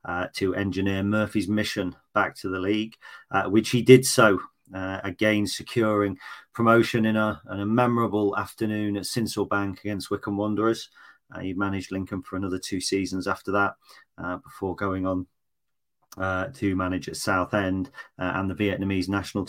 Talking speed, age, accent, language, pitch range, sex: 165 wpm, 40-59, British, English, 95-105 Hz, male